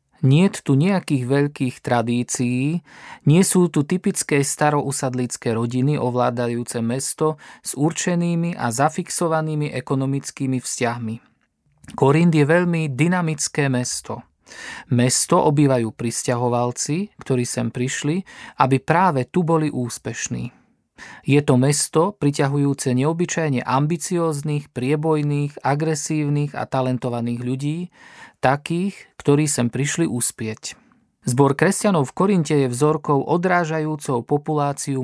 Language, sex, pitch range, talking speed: Slovak, male, 130-160 Hz, 100 wpm